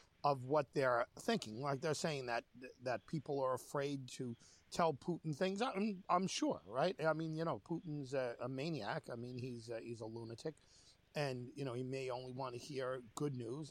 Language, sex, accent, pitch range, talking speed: English, male, American, 120-160 Hz, 195 wpm